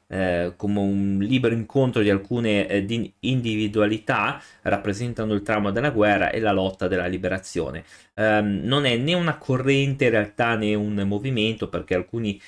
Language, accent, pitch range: Italian, native, 100-115 Hz